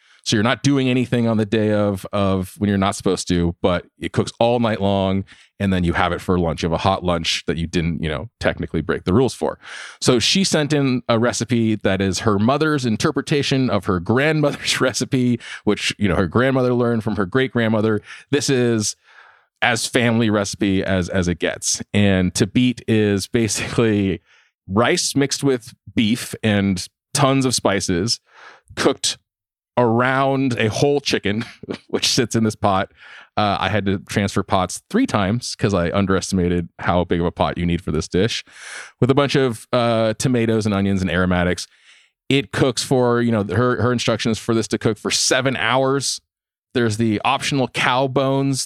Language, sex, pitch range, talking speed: English, male, 100-125 Hz, 185 wpm